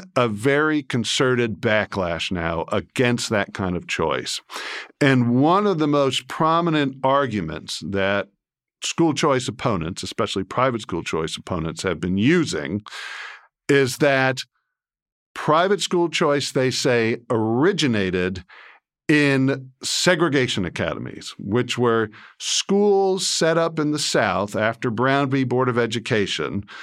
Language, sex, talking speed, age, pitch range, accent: English, male, 120 wpm, 50-69, 115-155 Hz, American